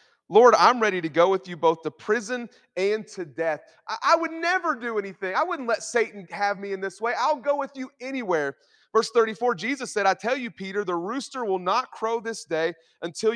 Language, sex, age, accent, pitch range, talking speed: English, male, 30-49, American, 175-245 Hz, 220 wpm